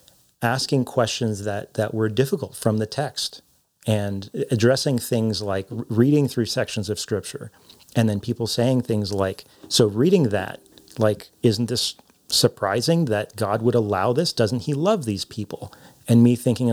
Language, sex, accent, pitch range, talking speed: English, male, American, 110-130 Hz, 160 wpm